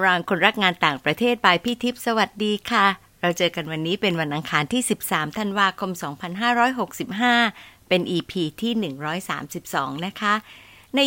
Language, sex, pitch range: Thai, female, 165-230 Hz